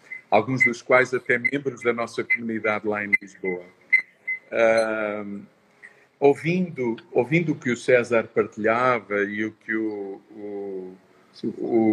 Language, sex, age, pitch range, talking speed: Portuguese, male, 50-69, 120-150 Hz, 125 wpm